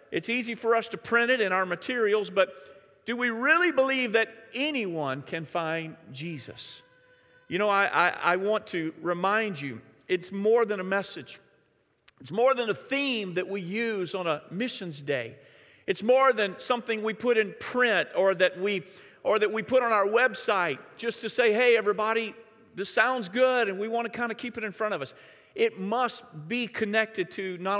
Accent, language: American, English